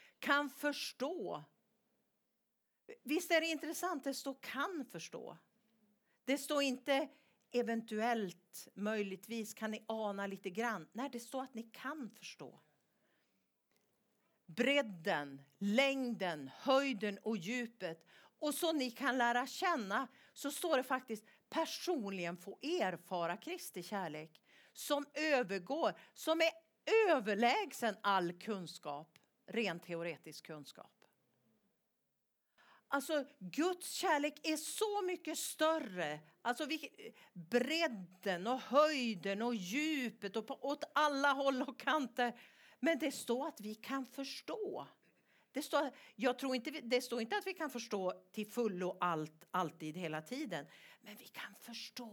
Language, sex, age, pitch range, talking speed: English, female, 50-69, 200-285 Hz, 125 wpm